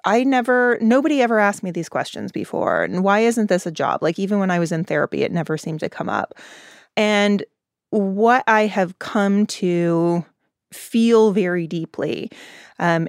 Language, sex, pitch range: English, female, 165-200 Hz